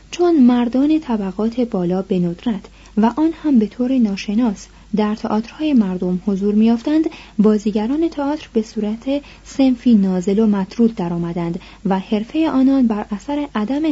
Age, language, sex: 30-49, Persian, female